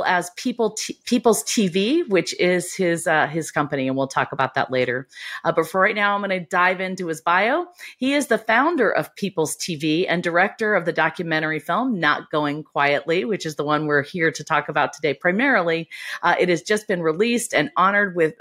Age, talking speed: 40-59, 210 wpm